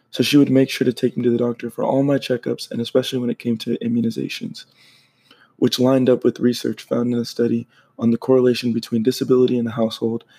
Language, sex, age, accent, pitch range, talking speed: English, male, 20-39, American, 115-130 Hz, 225 wpm